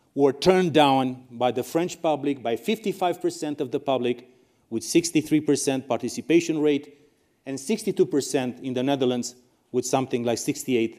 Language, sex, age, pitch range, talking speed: English, male, 40-59, 130-195 Hz, 135 wpm